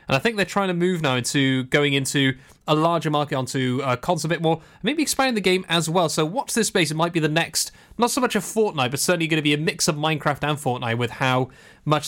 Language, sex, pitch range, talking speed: English, male, 145-185 Hz, 270 wpm